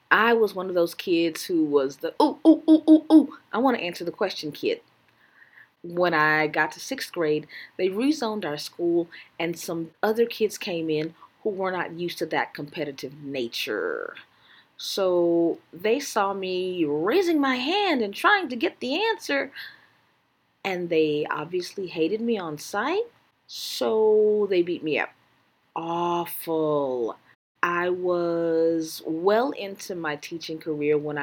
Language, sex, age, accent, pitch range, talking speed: English, female, 30-49, American, 155-220 Hz, 150 wpm